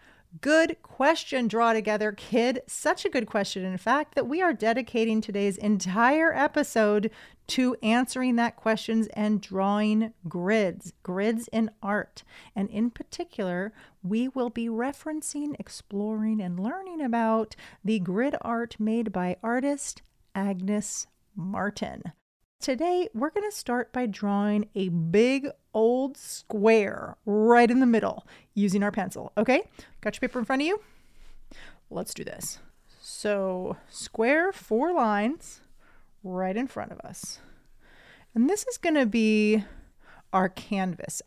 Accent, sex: American, female